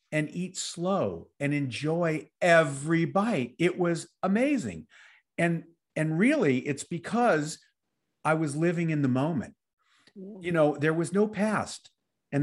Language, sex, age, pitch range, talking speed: English, male, 50-69, 120-155 Hz, 135 wpm